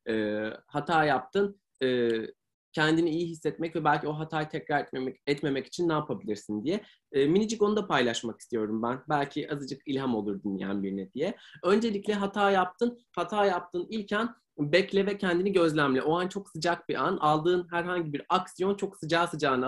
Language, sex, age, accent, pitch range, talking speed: Turkish, male, 30-49, native, 135-195 Hz, 170 wpm